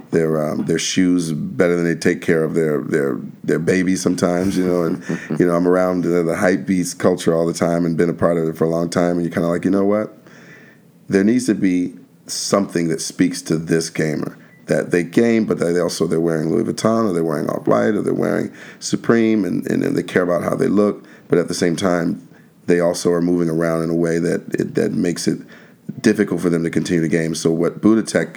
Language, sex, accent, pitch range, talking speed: English, male, American, 80-90 Hz, 240 wpm